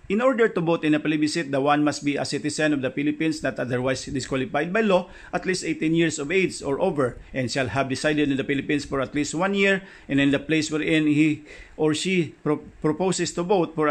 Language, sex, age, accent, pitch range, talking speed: English, male, 50-69, Filipino, 145-170 Hz, 230 wpm